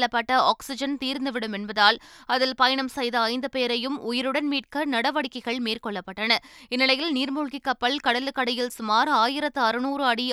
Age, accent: 20-39, native